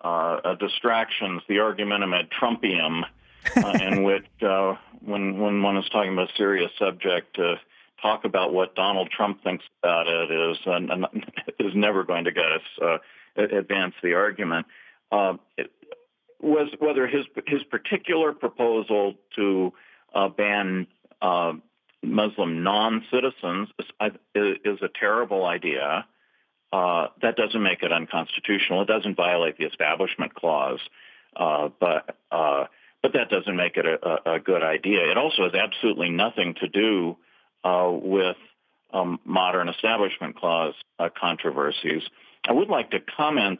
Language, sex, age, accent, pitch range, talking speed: English, male, 50-69, American, 95-120 Hz, 145 wpm